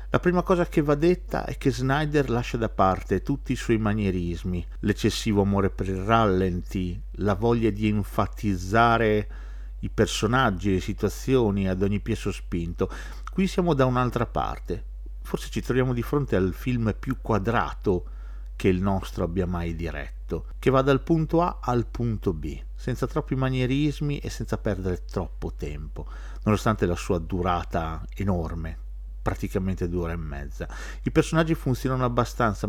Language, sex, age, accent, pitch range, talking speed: Italian, male, 50-69, native, 90-120 Hz, 150 wpm